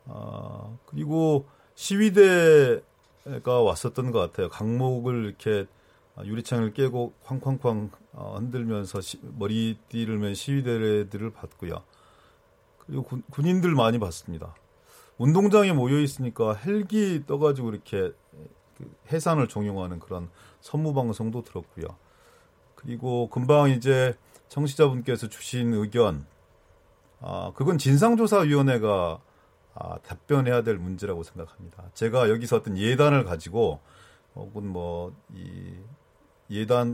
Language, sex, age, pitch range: Korean, male, 40-59, 105-140 Hz